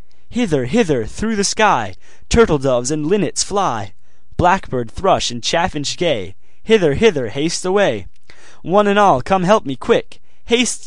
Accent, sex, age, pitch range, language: American, male, 20-39, 115-185 Hz, Korean